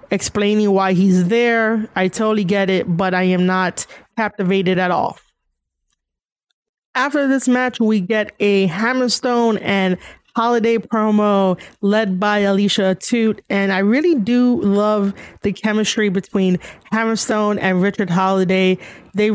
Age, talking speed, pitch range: 30-49, 130 wpm, 195-235 Hz